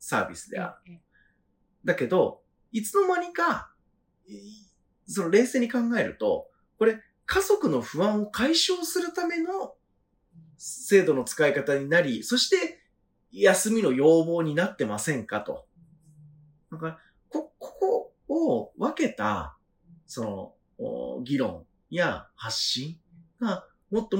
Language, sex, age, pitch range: Japanese, male, 30-49, 165-260 Hz